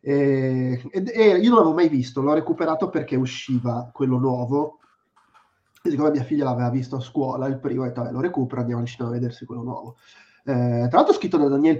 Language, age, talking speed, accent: Italian, 20-39, 225 wpm, native